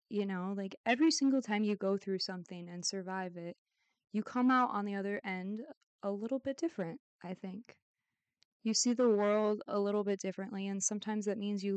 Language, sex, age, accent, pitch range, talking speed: English, female, 20-39, American, 190-230 Hz, 200 wpm